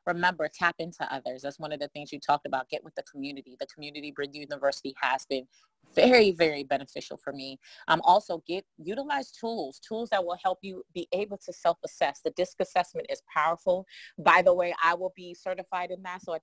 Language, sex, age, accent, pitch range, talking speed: English, female, 30-49, American, 150-195 Hz, 210 wpm